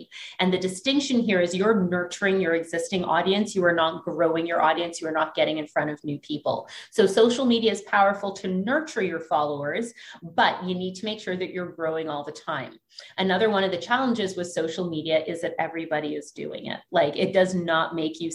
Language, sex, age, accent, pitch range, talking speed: English, female, 30-49, American, 165-200 Hz, 215 wpm